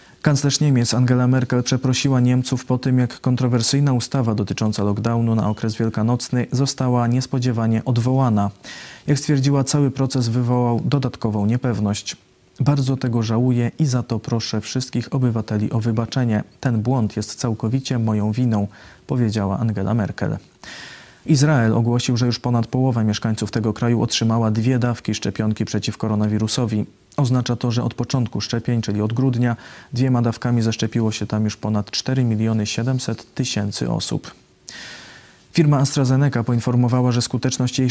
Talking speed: 140 wpm